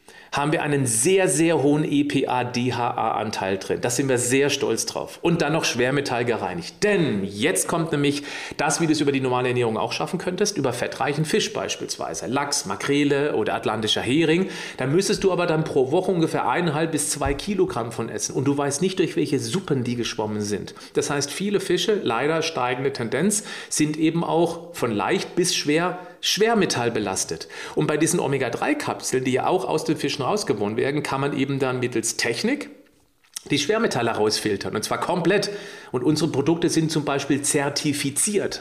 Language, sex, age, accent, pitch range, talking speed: German, male, 40-59, German, 130-175 Hz, 175 wpm